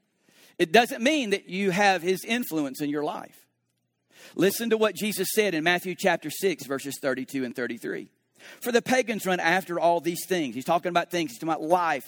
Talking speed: 200 wpm